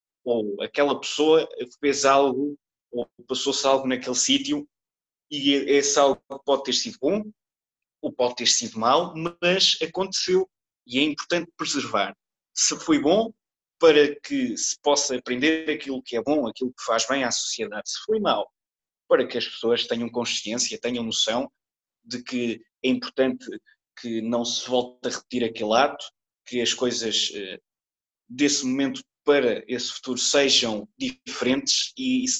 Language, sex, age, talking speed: Portuguese, male, 20-39, 150 wpm